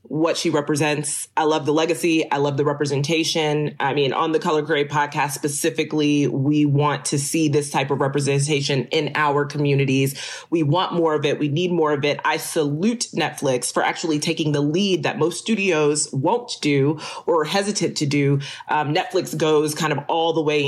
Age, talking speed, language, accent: 30-49, 190 wpm, English, American